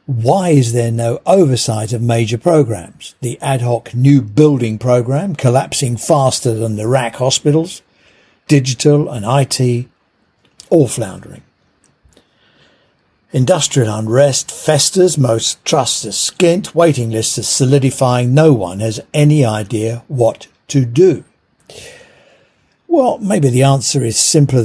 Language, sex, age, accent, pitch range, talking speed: English, male, 60-79, British, 120-160 Hz, 120 wpm